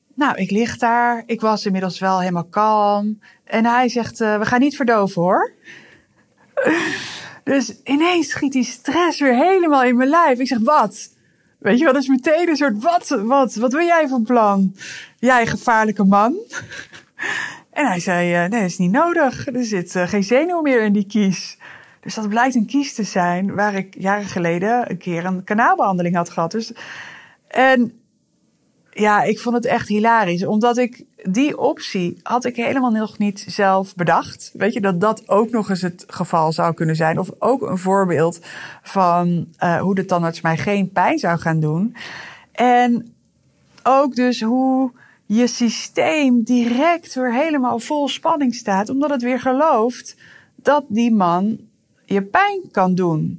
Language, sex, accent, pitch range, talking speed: Dutch, female, Dutch, 195-260 Hz, 175 wpm